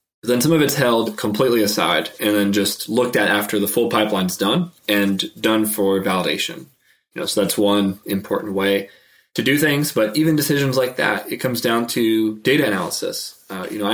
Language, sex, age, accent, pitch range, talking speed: English, male, 20-39, American, 100-115 Hz, 200 wpm